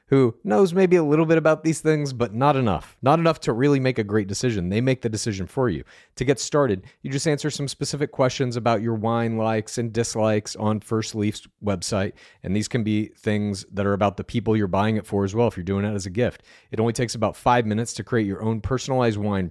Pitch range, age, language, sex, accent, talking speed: 105-135 Hz, 40-59, English, male, American, 245 wpm